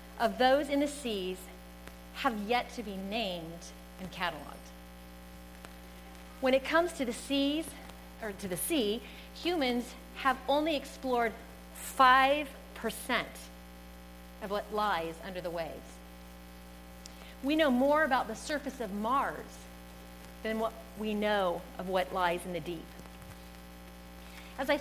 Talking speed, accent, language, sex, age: 130 wpm, American, English, female, 40-59